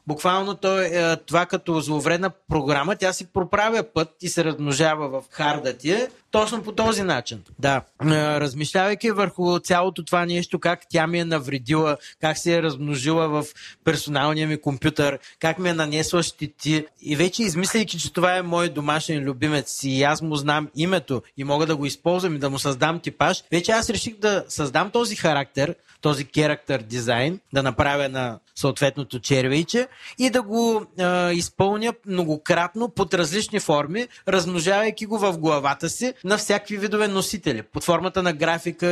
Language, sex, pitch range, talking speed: Bulgarian, male, 150-190 Hz, 165 wpm